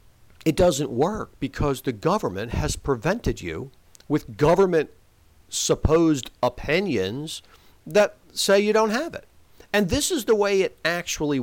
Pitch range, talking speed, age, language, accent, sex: 125-185 Hz, 135 wpm, 50-69, English, American, male